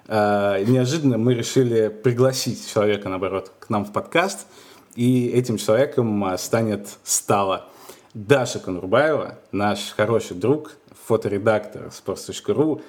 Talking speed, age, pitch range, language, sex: 105 wpm, 20-39, 105-130 Hz, Russian, male